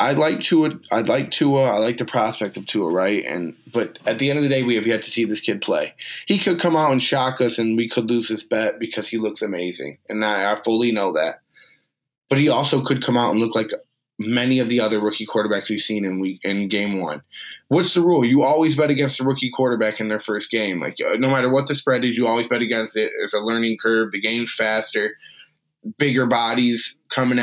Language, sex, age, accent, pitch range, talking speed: English, male, 20-39, American, 110-130 Hz, 240 wpm